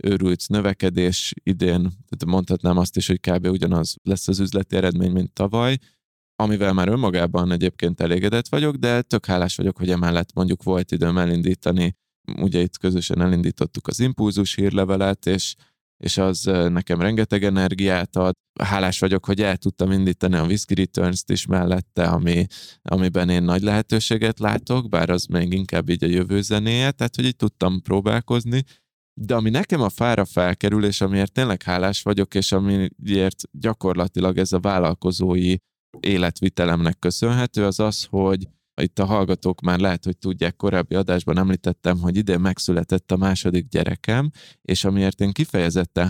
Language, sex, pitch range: Hungarian, male, 90-100 Hz